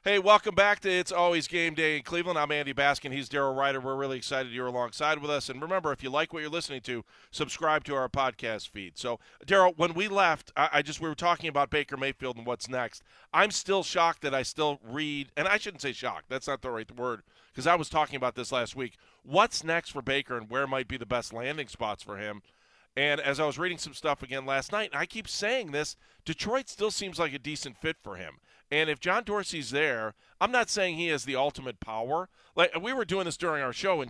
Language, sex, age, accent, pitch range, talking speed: English, male, 40-59, American, 130-175 Hz, 245 wpm